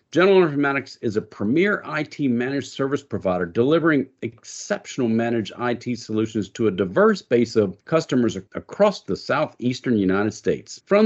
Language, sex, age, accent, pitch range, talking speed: English, male, 50-69, American, 115-160 Hz, 135 wpm